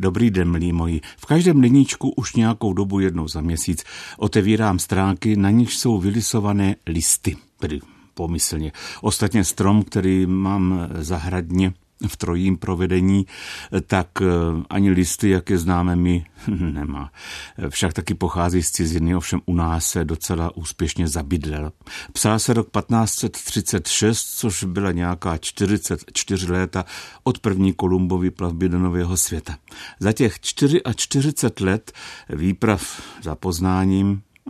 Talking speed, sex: 125 wpm, male